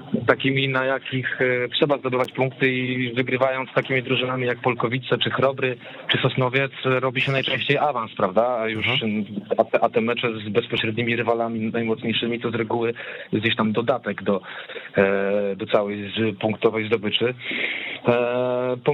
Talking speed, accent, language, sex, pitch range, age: 135 wpm, native, Polish, male, 110-130 Hz, 40-59